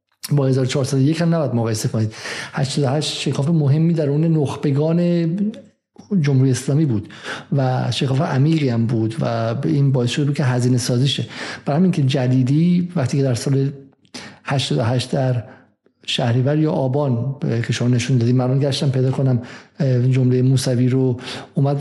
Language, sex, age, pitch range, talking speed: Persian, male, 50-69, 130-155 Hz, 150 wpm